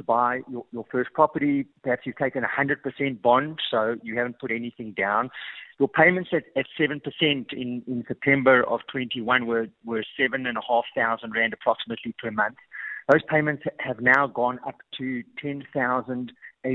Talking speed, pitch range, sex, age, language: 170 wpm, 125-145 Hz, male, 50-69, English